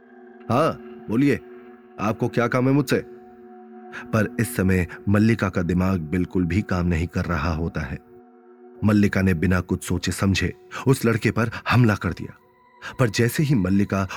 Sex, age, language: male, 30-49, Hindi